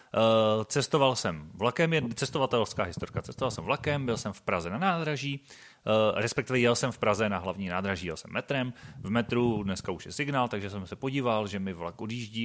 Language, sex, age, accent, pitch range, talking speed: Czech, male, 30-49, native, 105-140 Hz, 195 wpm